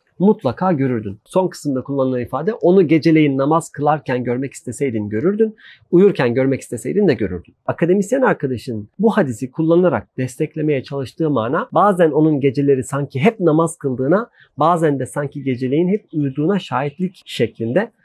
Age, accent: 40-59, native